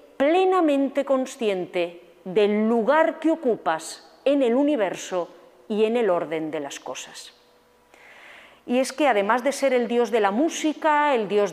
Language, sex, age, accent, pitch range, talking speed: Spanish, female, 40-59, Spanish, 195-275 Hz, 150 wpm